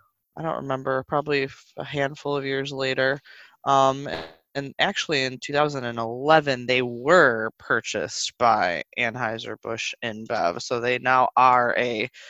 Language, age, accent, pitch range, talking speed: English, 20-39, American, 125-145 Hz, 120 wpm